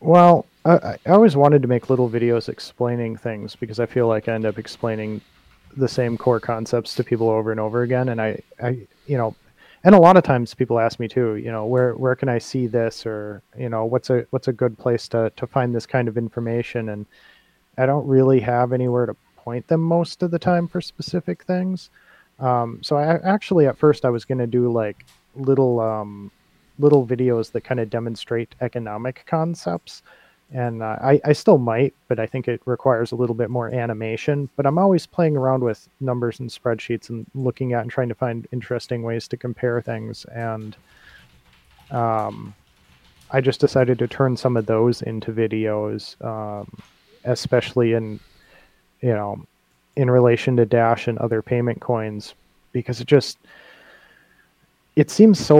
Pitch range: 115-130 Hz